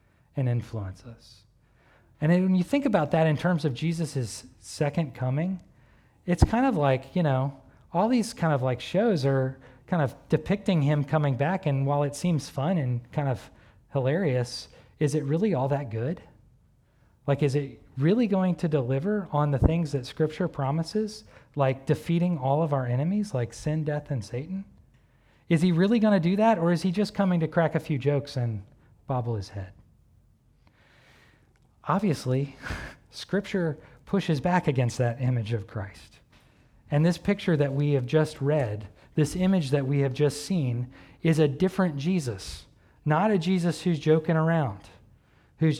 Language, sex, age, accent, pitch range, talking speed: English, male, 30-49, American, 125-170 Hz, 170 wpm